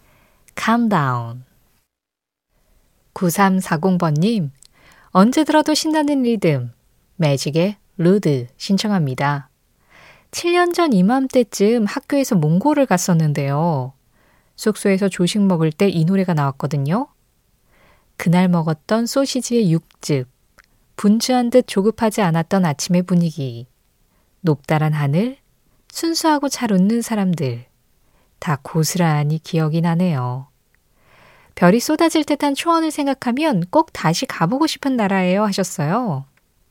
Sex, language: female, Korean